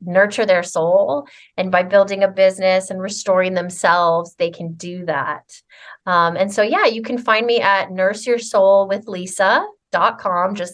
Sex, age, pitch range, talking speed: female, 30-49, 175-200 Hz, 145 wpm